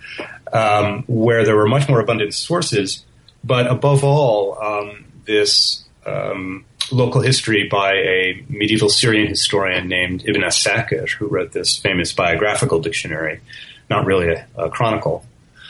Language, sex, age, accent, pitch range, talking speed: English, male, 30-49, American, 100-130 Hz, 135 wpm